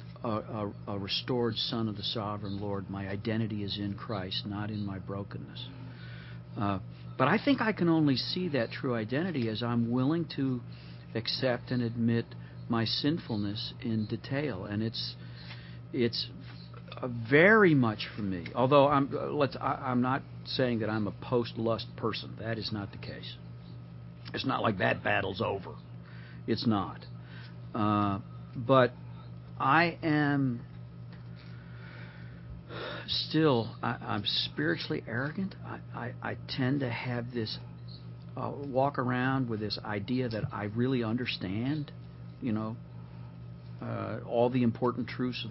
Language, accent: English, American